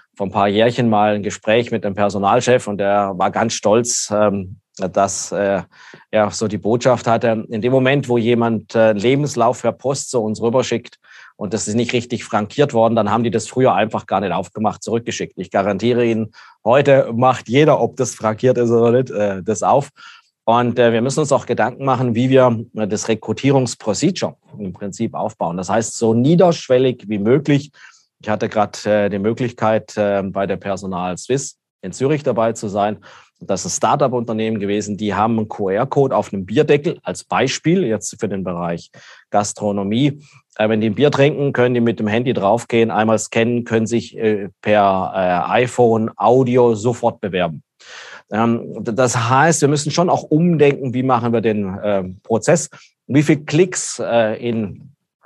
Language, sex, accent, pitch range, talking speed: German, male, German, 105-130 Hz, 165 wpm